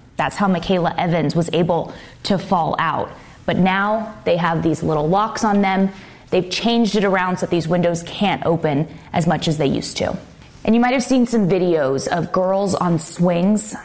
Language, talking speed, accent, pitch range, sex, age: English, 190 wpm, American, 165-205 Hz, female, 20-39